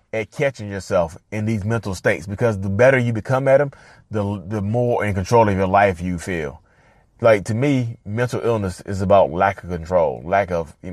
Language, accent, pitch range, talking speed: English, American, 90-120 Hz, 205 wpm